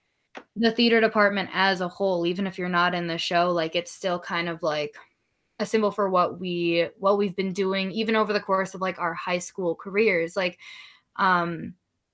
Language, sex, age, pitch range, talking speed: English, female, 20-39, 170-205 Hz, 200 wpm